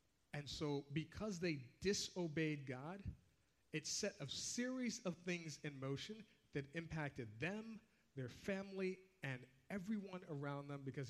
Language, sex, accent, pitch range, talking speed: English, male, American, 135-180 Hz, 130 wpm